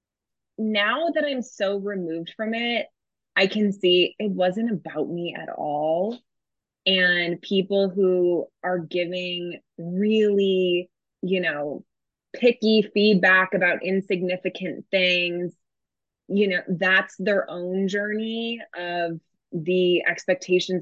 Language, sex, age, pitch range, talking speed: English, female, 20-39, 175-210 Hz, 110 wpm